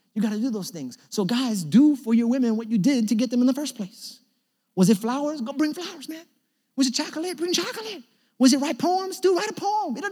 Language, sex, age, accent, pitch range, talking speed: English, male, 30-49, American, 230-300 Hz, 260 wpm